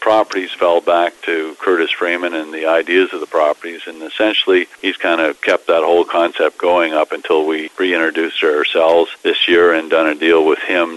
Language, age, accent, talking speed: English, 50-69, American, 190 wpm